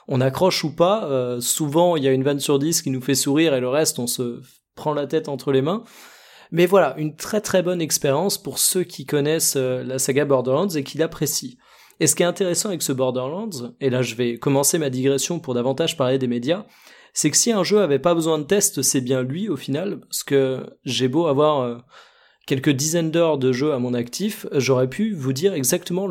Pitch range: 130-170 Hz